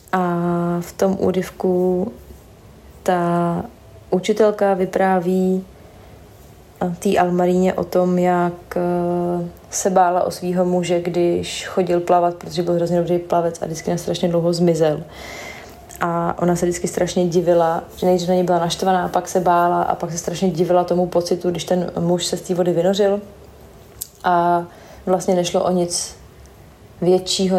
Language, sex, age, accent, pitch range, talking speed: Czech, female, 30-49, native, 175-190 Hz, 150 wpm